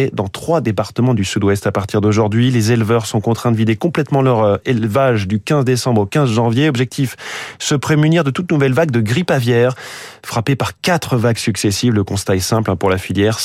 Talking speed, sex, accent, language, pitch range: 200 wpm, male, French, French, 110-140 Hz